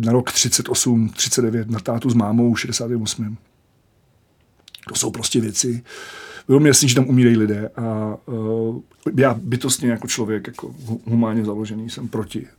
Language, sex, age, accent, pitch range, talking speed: Czech, male, 40-59, native, 110-120 Hz, 150 wpm